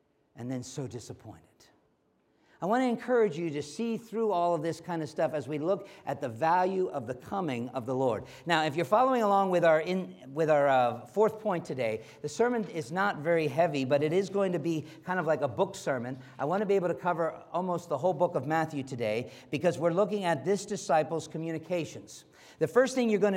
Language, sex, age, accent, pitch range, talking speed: English, male, 50-69, American, 145-185 Hz, 225 wpm